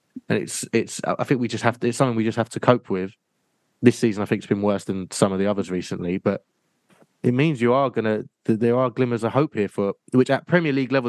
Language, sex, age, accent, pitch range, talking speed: English, male, 20-39, British, 95-120 Hz, 260 wpm